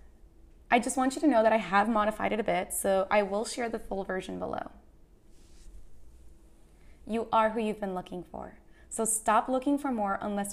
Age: 20-39